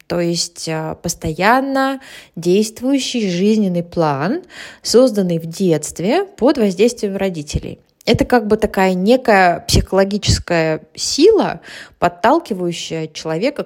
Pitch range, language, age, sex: 170-245 Hz, English, 20-39, female